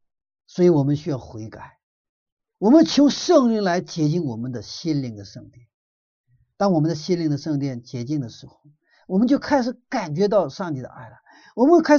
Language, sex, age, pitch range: Chinese, male, 50-69, 140-230 Hz